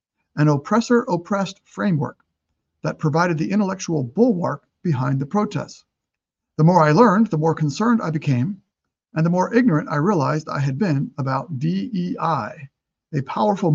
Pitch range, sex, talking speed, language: 140-185 Hz, male, 150 wpm, English